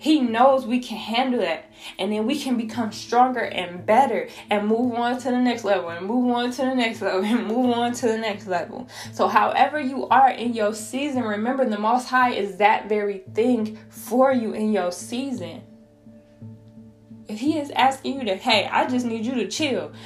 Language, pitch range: English, 200-280 Hz